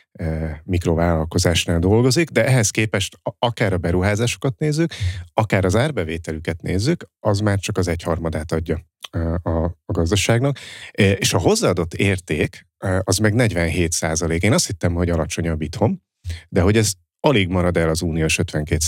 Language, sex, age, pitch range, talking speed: Hungarian, male, 30-49, 85-105 Hz, 140 wpm